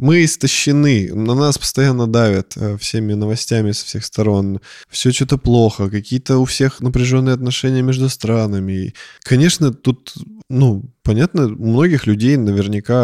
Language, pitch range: Russian, 110-145 Hz